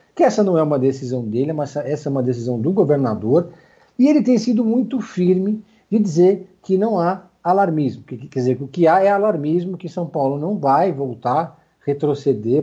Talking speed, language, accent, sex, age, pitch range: 205 wpm, Portuguese, Brazilian, male, 50-69, 130-175 Hz